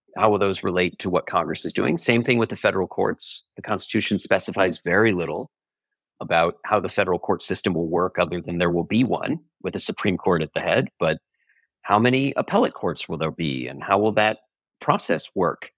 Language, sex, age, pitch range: English, male, 40-59, 90-120 Hz